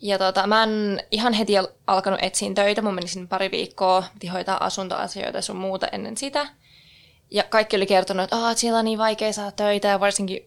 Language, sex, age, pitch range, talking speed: Finnish, female, 20-39, 185-215 Hz, 195 wpm